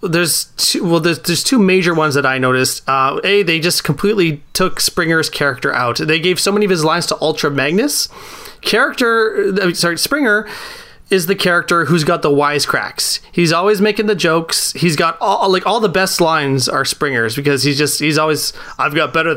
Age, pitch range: 30-49, 145-185 Hz